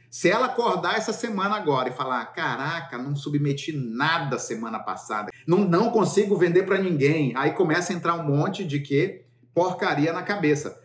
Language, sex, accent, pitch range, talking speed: English, male, Brazilian, 135-185 Hz, 170 wpm